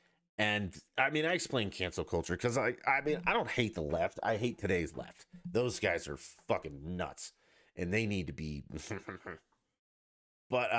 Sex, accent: male, American